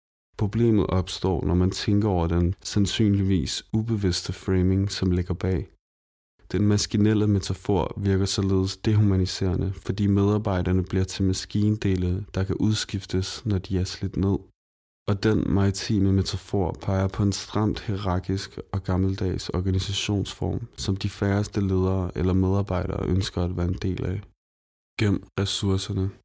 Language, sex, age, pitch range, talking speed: Danish, male, 20-39, 95-100 Hz, 135 wpm